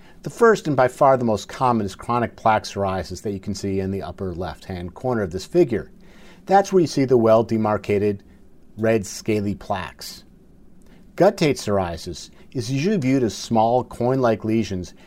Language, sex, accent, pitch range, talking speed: English, male, American, 100-135 Hz, 165 wpm